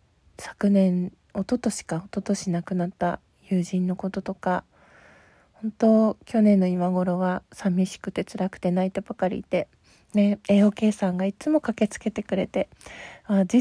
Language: Japanese